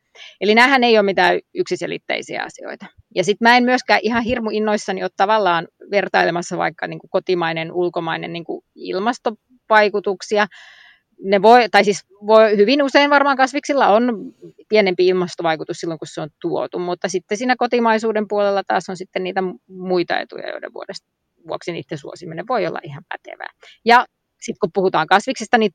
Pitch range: 180-230 Hz